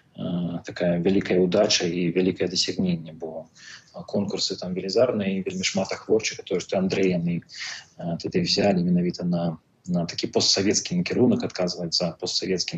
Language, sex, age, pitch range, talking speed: Russian, male, 30-49, 90-100 Hz, 130 wpm